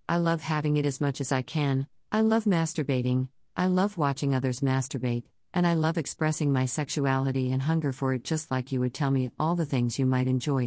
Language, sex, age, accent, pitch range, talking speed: English, female, 50-69, American, 130-165 Hz, 220 wpm